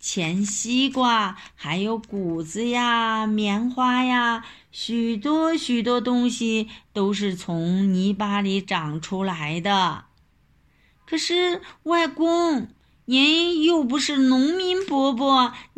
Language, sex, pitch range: Chinese, female, 205-275 Hz